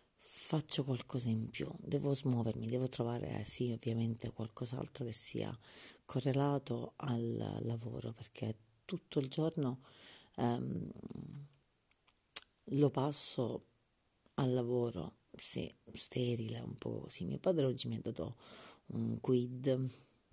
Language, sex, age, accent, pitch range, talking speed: Italian, female, 40-59, native, 115-140 Hz, 115 wpm